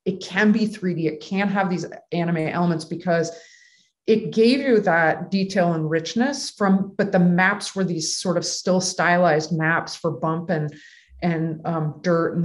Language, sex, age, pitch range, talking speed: English, female, 30-49, 165-205 Hz, 180 wpm